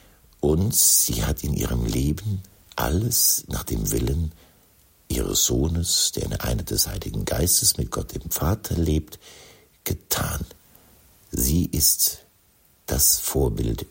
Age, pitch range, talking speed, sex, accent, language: 60-79, 80-100 Hz, 120 wpm, male, German, German